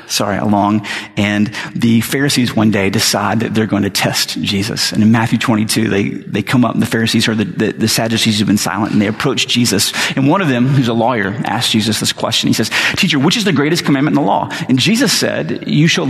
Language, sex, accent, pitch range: English, male, American, 110-140 Hz